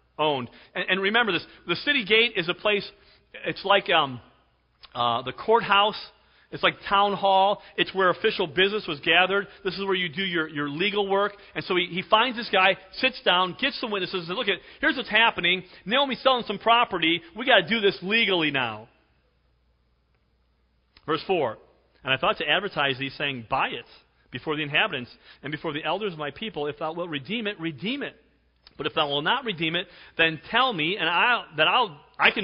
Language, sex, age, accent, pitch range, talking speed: English, male, 40-59, American, 135-210 Hz, 205 wpm